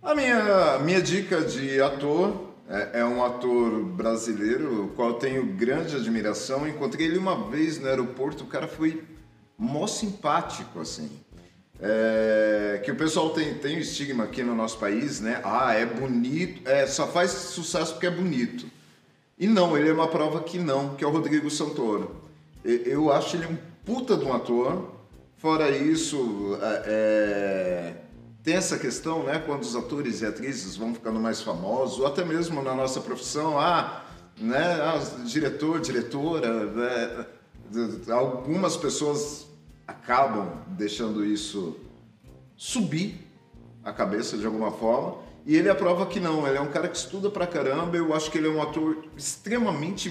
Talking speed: 160 wpm